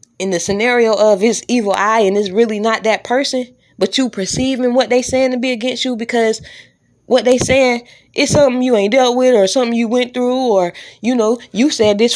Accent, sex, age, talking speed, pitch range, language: American, female, 20-39, 215 wpm, 195-240 Hz, English